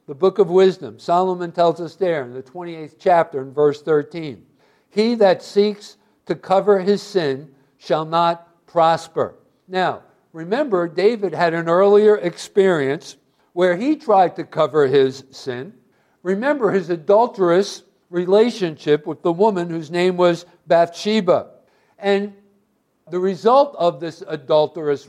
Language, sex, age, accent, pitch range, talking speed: English, male, 60-79, American, 165-205 Hz, 135 wpm